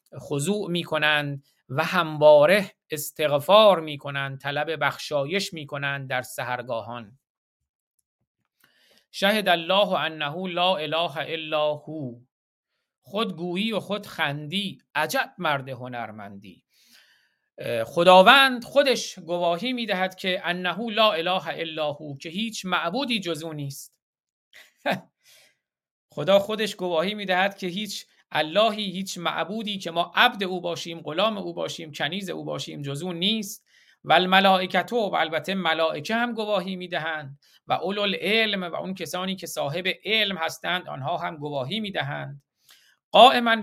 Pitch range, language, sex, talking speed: 150-195 Hz, Persian, male, 130 wpm